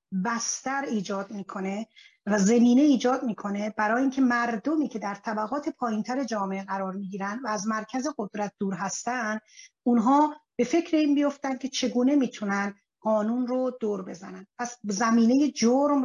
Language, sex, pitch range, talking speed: Persian, female, 210-260 Hz, 140 wpm